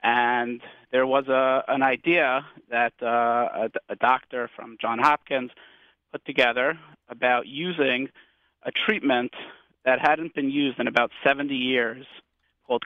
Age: 40-59